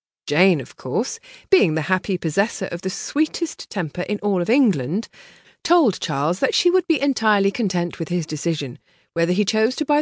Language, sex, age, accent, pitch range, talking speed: English, female, 40-59, British, 165-255 Hz, 185 wpm